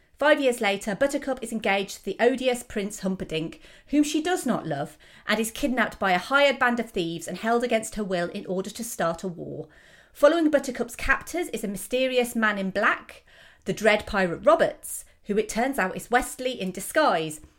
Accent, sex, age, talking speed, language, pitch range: British, female, 30-49, 195 wpm, English, 195-285 Hz